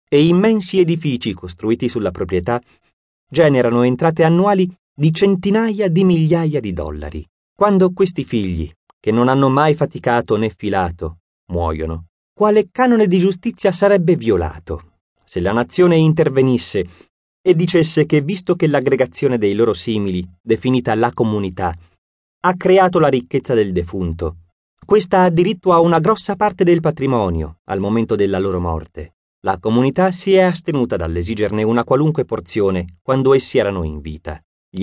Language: Italian